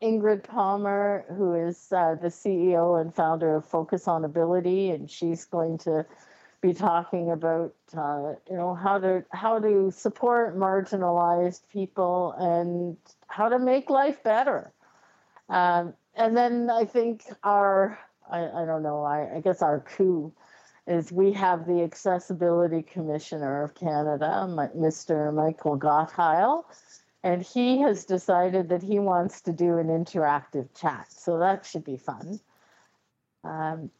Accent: American